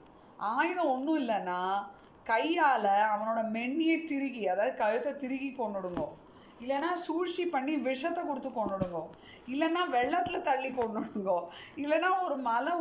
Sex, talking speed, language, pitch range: female, 115 wpm, Tamil, 225-305 Hz